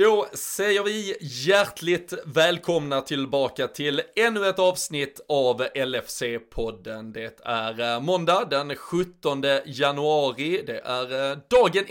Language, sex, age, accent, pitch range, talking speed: Swedish, male, 20-39, native, 130-180 Hz, 105 wpm